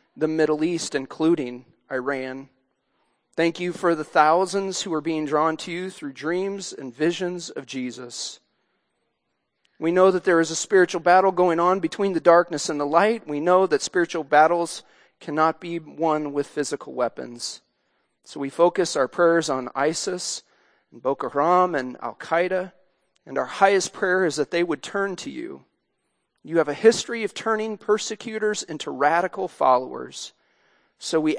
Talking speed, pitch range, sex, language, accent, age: 160 wpm, 145-180 Hz, male, English, American, 40-59